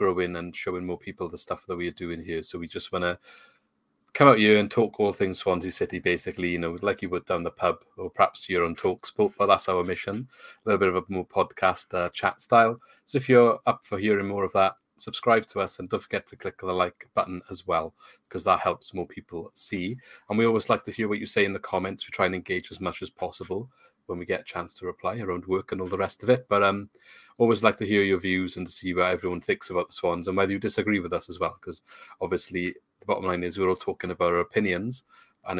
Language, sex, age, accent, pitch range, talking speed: English, male, 30-49, British, 90-105 Hz, 260 wpm